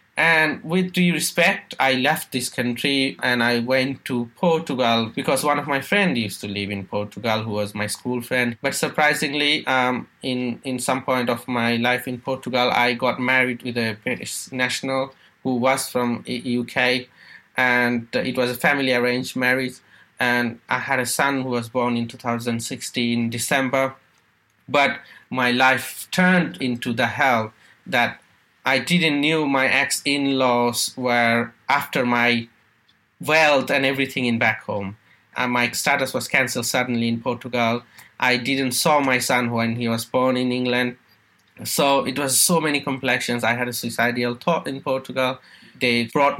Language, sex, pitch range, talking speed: English, male, 120-135 Hz, 160 wpm